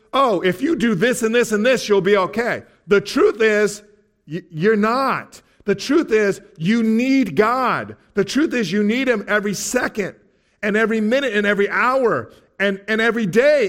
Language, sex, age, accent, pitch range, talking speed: English, male, 50-69, American, 165-220 Hz, 180 wpm